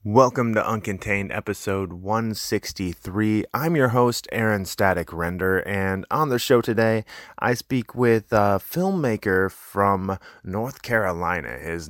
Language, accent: English, American